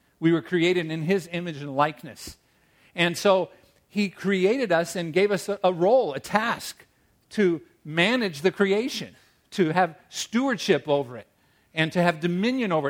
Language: English